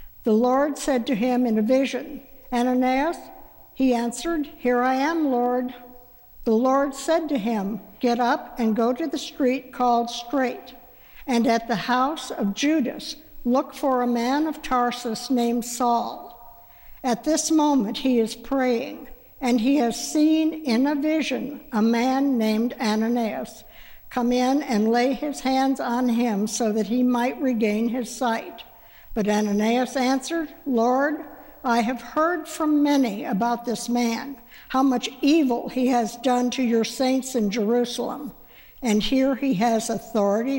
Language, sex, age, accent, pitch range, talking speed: English, female, 60-79, American, 230-270 Hz, 150 wpm